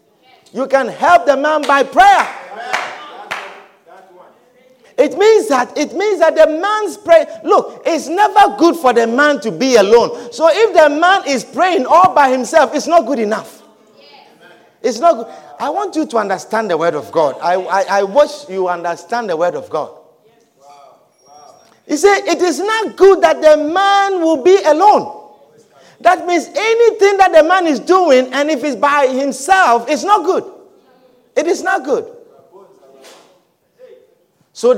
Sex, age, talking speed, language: male, 50-69, 160 wpm, English